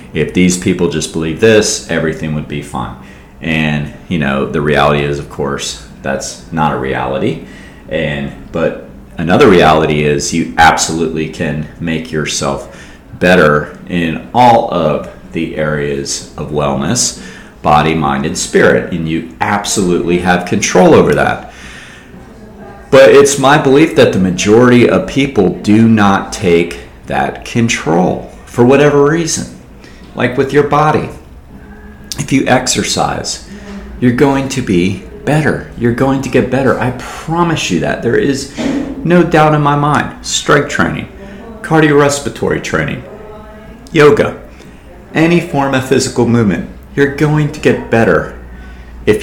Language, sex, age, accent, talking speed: English, male, 30-49, American, 135 wpm